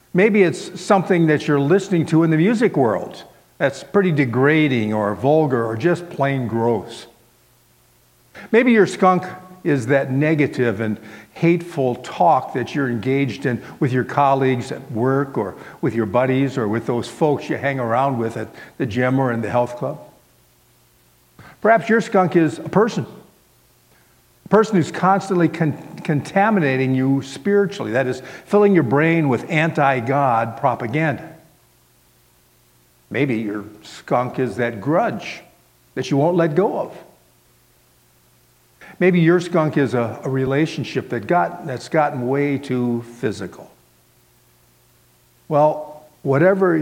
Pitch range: 115-165 Hz